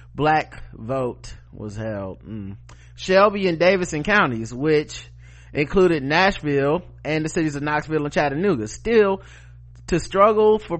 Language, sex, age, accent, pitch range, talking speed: English, male, 30-49, American, 135-170 Hz, 130 wpm